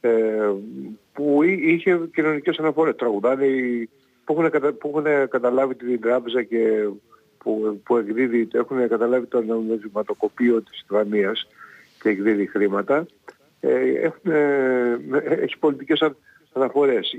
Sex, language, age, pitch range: male, Greek, 50-69, 110-135 Hz